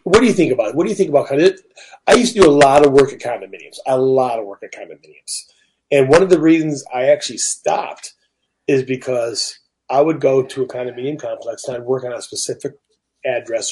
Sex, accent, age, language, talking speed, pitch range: male, American, 40-59, English, 230 wpm, 130-160 Hz